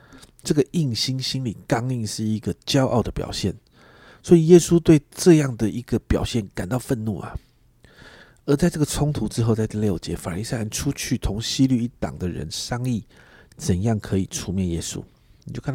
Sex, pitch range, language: male, 105-140 Hz, Chinese